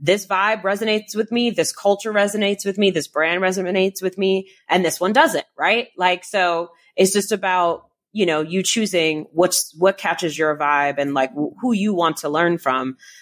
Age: 20-39